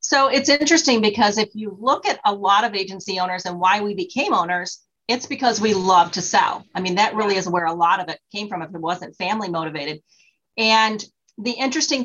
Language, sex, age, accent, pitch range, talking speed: English, female, 40-59, American, 185-230 Hz, 220 wpm